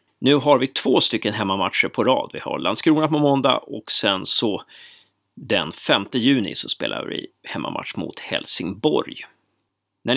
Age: 30-49